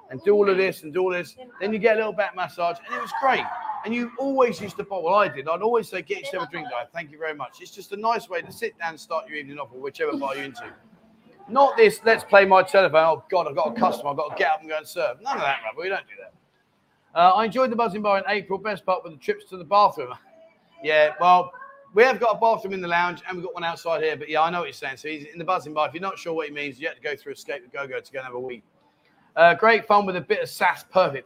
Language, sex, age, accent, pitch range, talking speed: English, male, 30-49, British, 165-225 Hz, 315 wpm